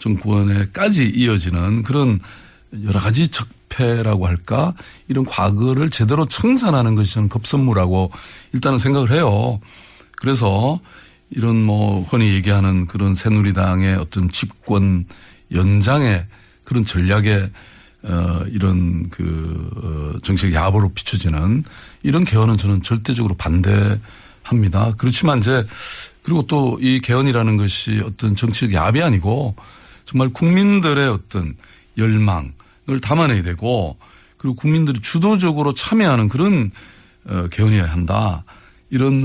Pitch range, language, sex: 100-130 Hz, Korean, male